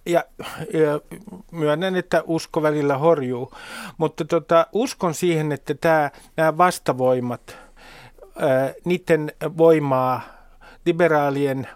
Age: 50-69